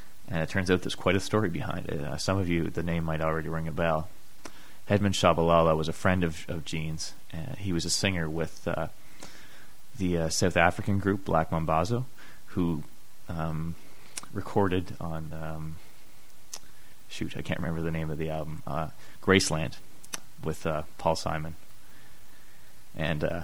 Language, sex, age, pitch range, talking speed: English, male, 30-49, 80-95 Hz, 160 wpm